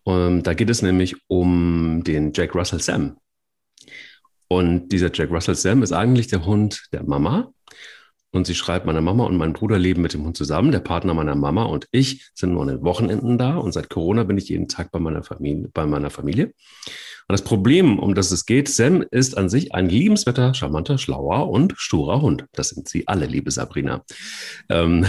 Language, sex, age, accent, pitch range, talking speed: German, male, 40-59, German, 90-115 Hz, 200 wpm